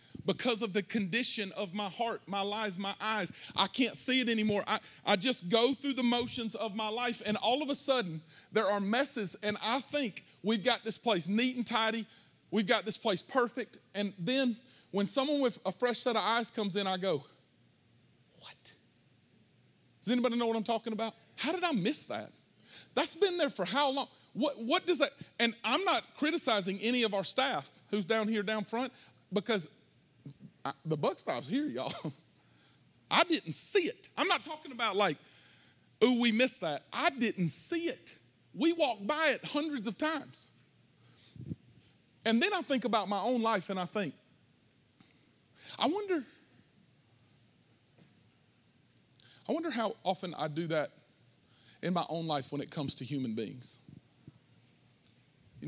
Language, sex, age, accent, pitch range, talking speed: English, male, 40-59, American, 200-260 Hz, 175 wpm